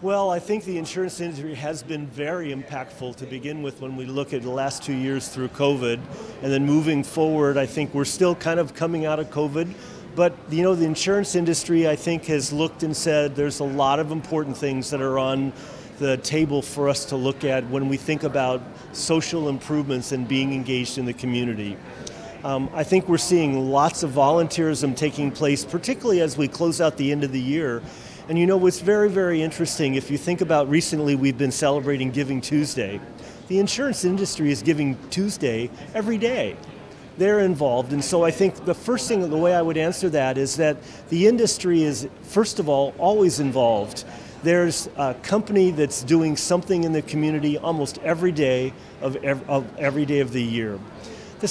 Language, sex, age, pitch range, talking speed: English, male, 40-59, 135-170 Hz, 195 wpm